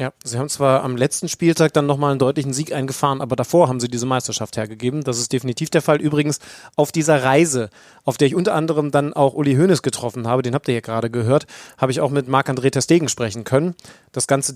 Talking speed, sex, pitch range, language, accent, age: 230 wpm, male, 130-155 Hz, German, German, 30-49